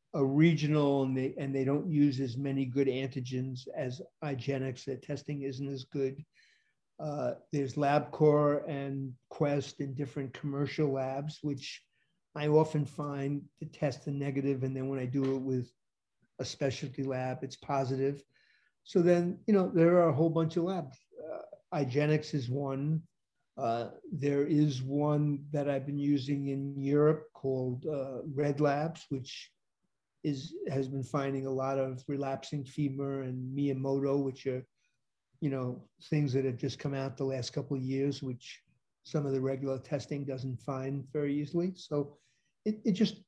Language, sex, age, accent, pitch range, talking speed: English, male, 50-69, American, 135-155 Hz, 160 wpm